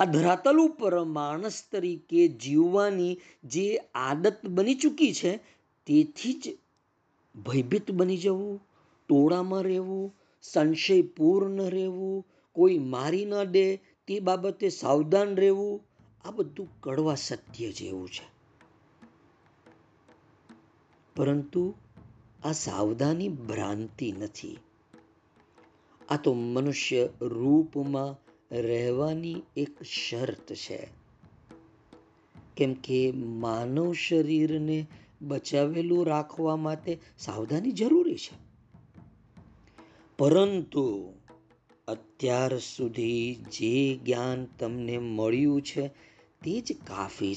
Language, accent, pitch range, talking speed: Gujarati, native, 115-185 Hz, 60 wpm